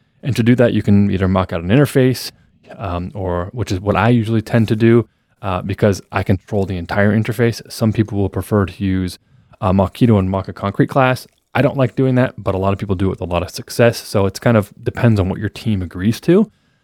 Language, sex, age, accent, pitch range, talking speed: English, male, 20-39, American, 95-115 Hz, 250 wpm